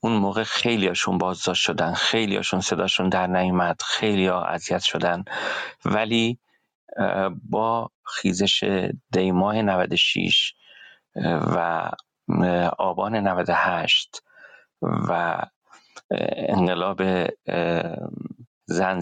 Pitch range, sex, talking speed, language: 90-100 Hz, male, 80 wpm, English